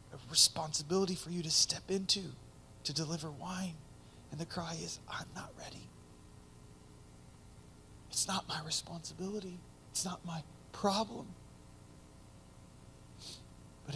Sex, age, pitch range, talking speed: male, 30-49, 105-170 Hz, 110 wpm